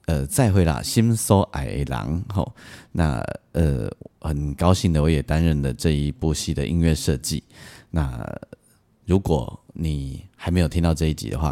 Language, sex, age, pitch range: Chinese, male, 30-49, 75-90 Hz